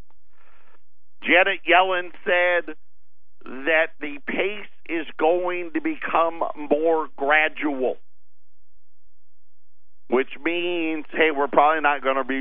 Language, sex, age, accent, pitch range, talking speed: English, male, 50-69, American, 120-150 Hz, 100 wpm